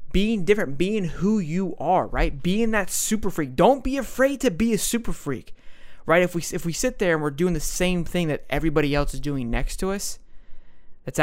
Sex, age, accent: male, 20-39, American